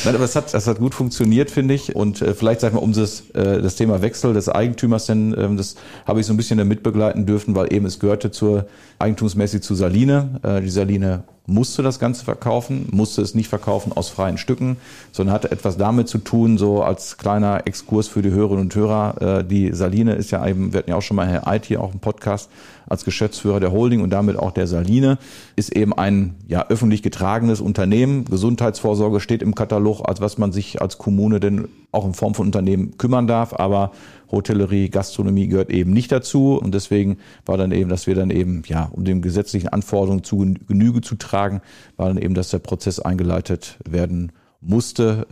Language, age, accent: German, 40-59, German